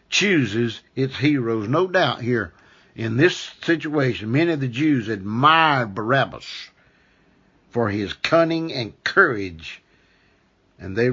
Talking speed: 120 wpm